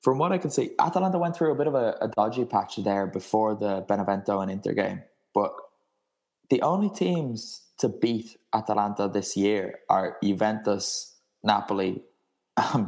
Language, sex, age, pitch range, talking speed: English, male, 10-29, 100-125 Hz, 165 wpm